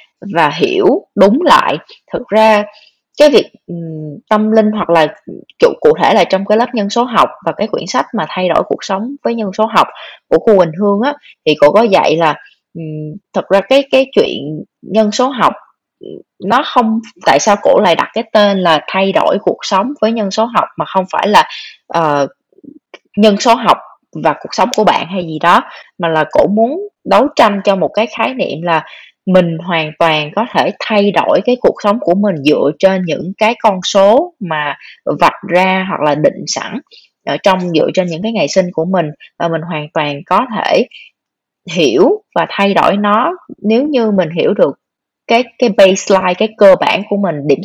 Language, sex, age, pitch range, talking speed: Vietnamese, female, 20-39, 175-230 Hz, 205 wpm